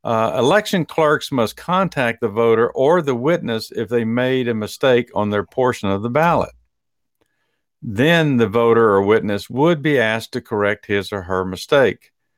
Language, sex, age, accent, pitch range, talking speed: English, male, 50-69, American, 95-125 Hz, 170 wpm